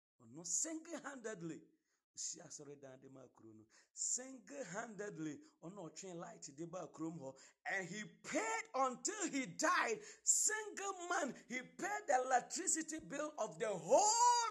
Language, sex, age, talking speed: English, male, 50-69, 85 wpm